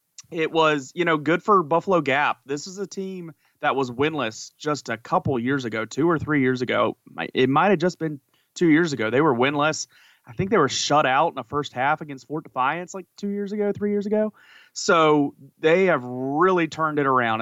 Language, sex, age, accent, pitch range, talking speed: English, male, 30-49, American, 130-160 Hz, 215 wpm